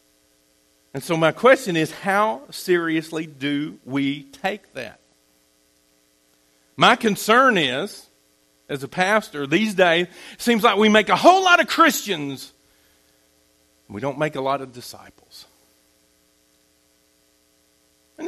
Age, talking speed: 50-69, 120 wpm